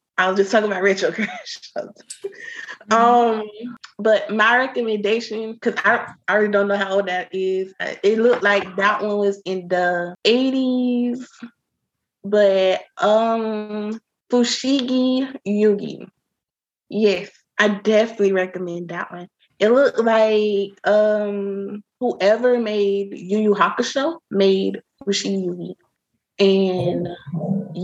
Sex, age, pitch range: female, 20-39, 190-225 Hz